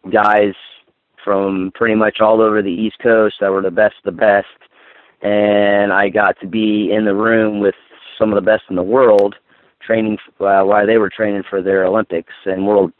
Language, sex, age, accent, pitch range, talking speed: English, male, 30-49, American, 100-110 Hz, 200 wpm